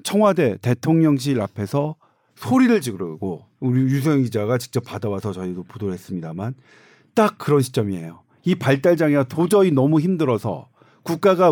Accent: native